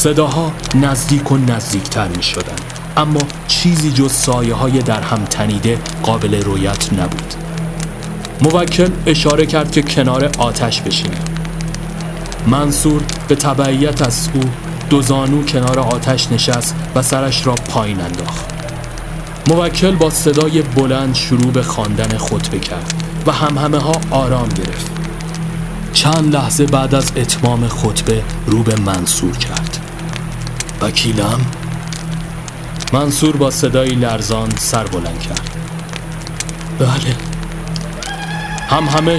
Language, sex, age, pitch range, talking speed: Persian, male, 30-49, 120-160 Hz, 110 wpm